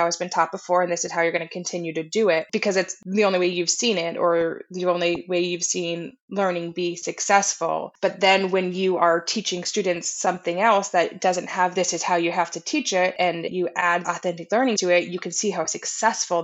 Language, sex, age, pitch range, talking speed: English, female, 20-39, 170-195 Hz, 235 wpm